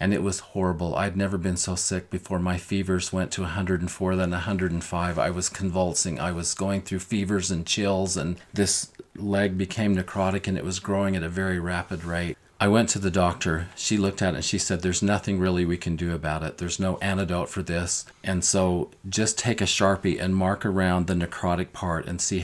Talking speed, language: 215 wpm, English